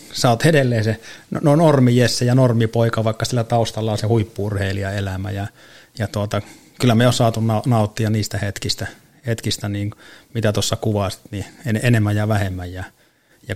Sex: male